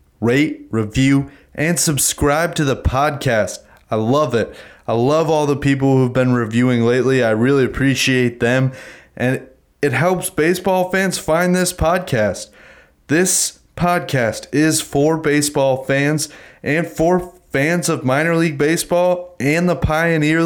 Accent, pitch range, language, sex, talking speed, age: American, 130-160 Hz, English, male, 140 wpm, 30-49